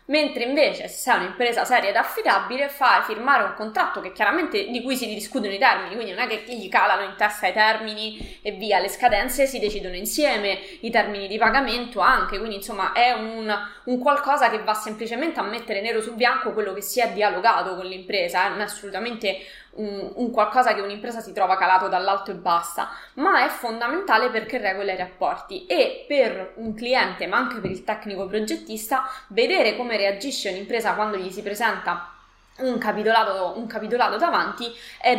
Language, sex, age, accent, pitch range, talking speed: Italian, female, 20-39, native, 205-245 Hz, 185 wpm